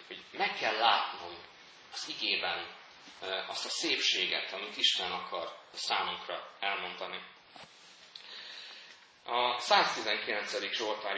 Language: Hungarian